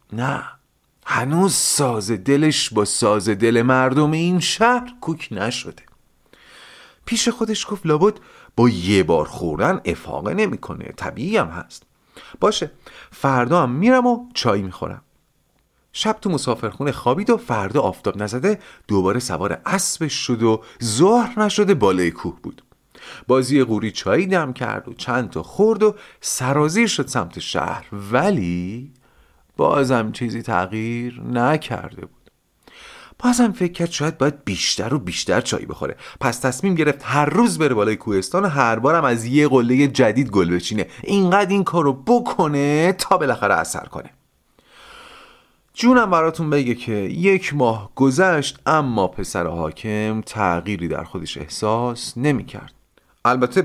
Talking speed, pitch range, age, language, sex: 130 wpm, 110-180 Hz, 40-59, Persian, male